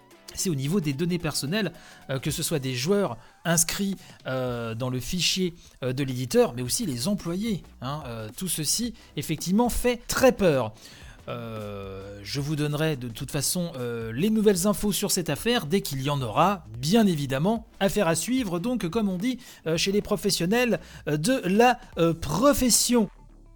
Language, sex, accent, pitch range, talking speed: French, male, French, 150-225 Hz, 150 wpm